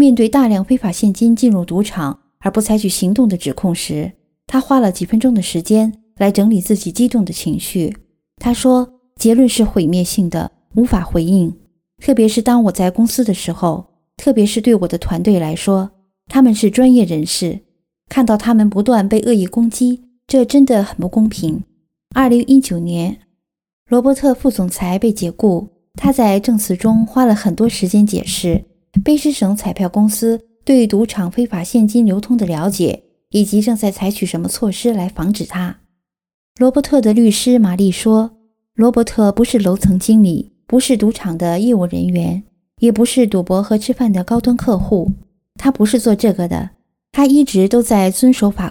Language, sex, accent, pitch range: Chinese, female, native, 185-235 Hz